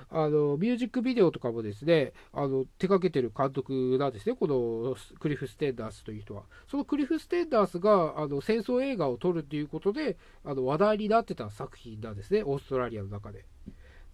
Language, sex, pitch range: Japanese, male, 115-190 Hz